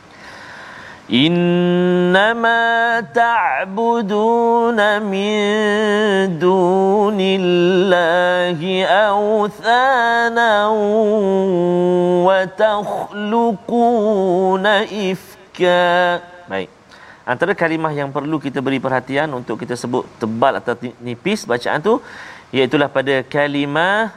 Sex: male